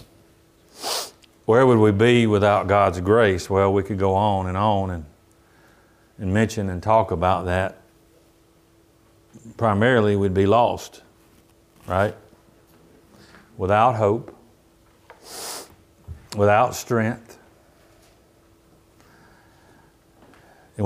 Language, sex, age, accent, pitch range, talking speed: English, male, 50-69, American, 100-120 Hz, 90 wpm